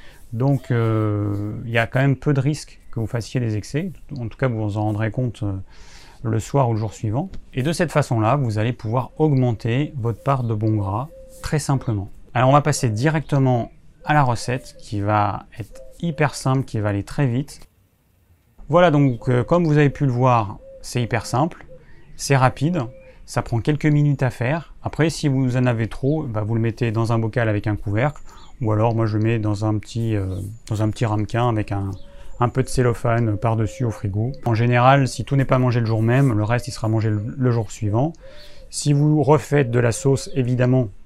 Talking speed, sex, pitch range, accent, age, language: 215 wpm, male, 110-135 Hz, French, 30-49, French